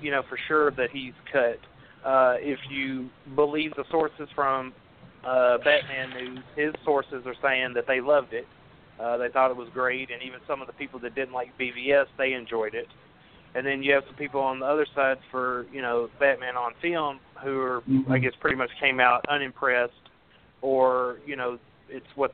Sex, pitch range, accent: male, 125-150 Hz, American